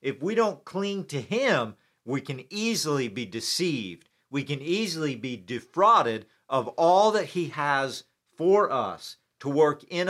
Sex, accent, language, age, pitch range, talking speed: male, American, English, 50-69, 130-180 Hz, 155 wpm